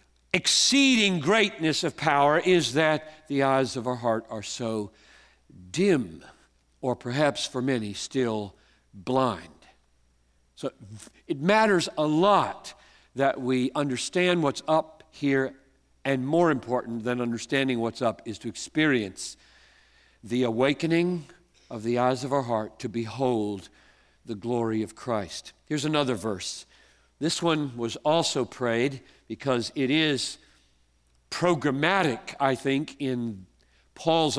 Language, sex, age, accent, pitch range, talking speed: English, male, 50-69, American, 115-155 Hz, 125 wpm